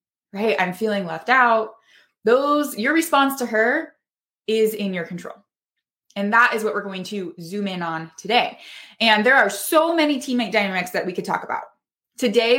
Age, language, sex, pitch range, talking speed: 20-39, English, female, 205-270 Hz, 180 wpm